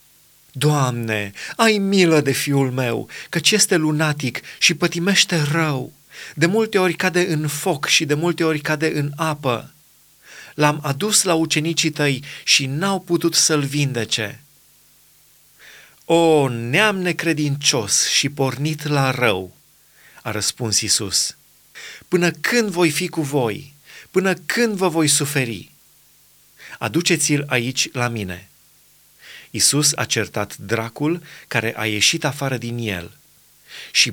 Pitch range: 120-165 Hz